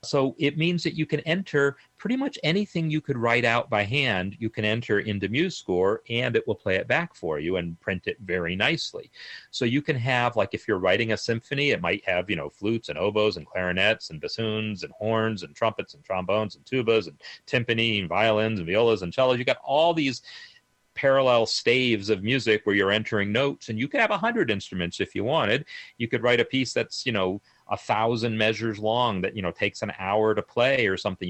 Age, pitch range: 40-59, 100-125 Hz